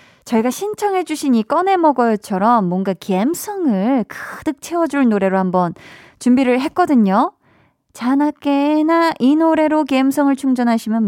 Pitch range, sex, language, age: 195-280 Hz, female, Korean, 20-39